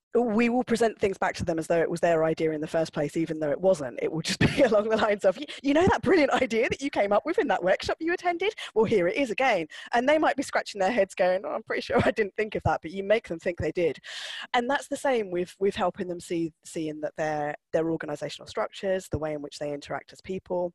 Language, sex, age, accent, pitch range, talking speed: English, female, 20-39, British, 155-210 Hz, 280 wpm